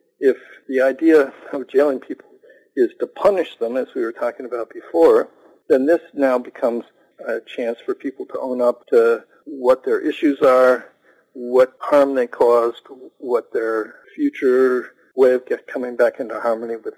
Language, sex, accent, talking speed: English, male, American, 165 wpm